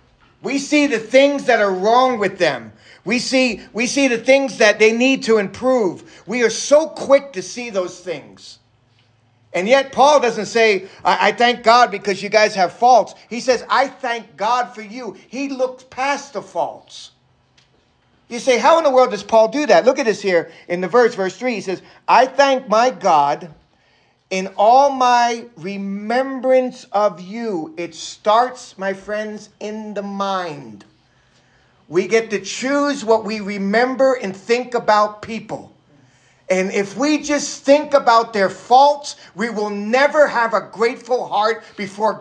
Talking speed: 170 wpm